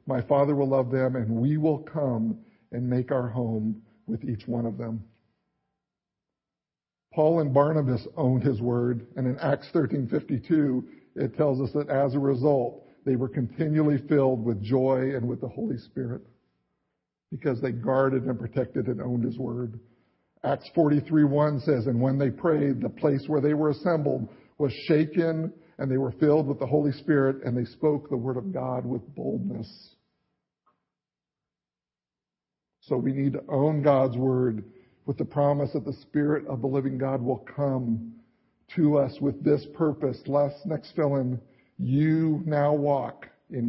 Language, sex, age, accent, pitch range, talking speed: English, male, 50-69, American, 125-150 Hz, 165 wpm